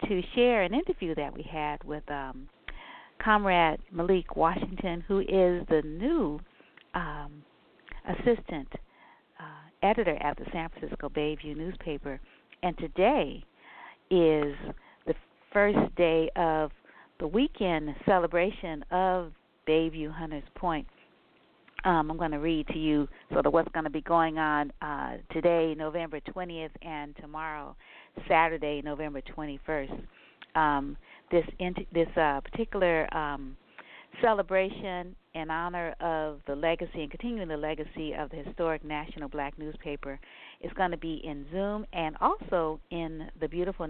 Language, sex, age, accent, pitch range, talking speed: English, female, 50-69, American, 150-180 Hz, 135 wpm